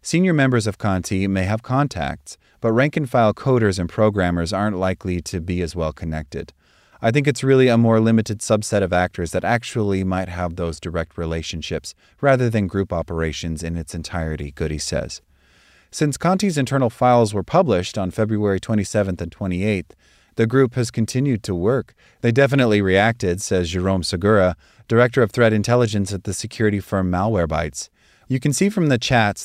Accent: American